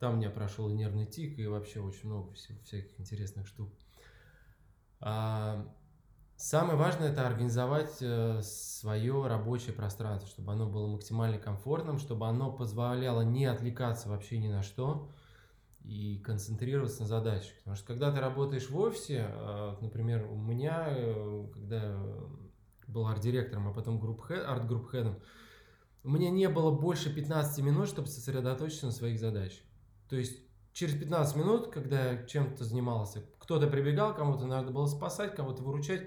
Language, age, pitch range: Russian, 20-39, 110-140 Hz